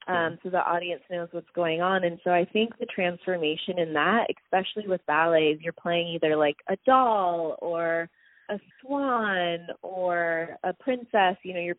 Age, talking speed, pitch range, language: 20-39, 175 wpm, 160-195 Hz, English